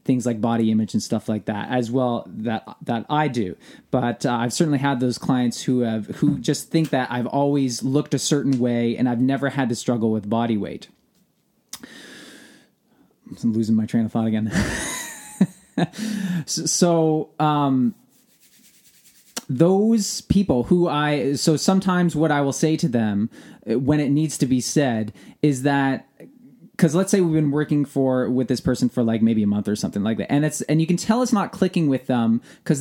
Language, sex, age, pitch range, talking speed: English, male, 20-39, 120-170 Hz, 185 wpm